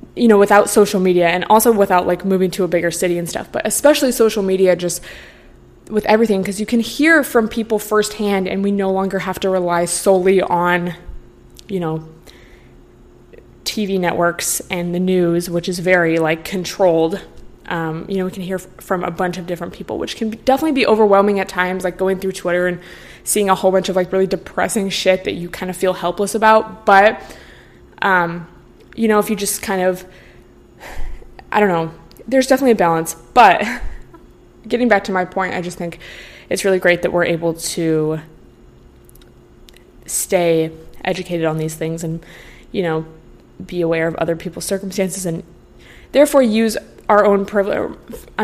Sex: female